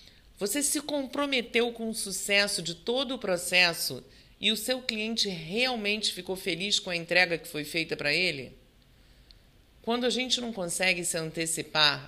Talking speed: 160 wpm